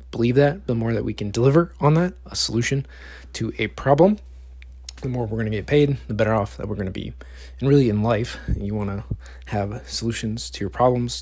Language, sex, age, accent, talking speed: English, male, 20-39, American, 225 wpm